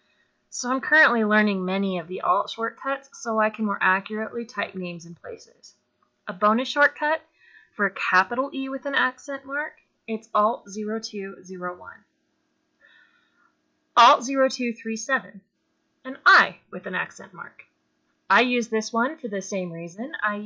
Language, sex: English, female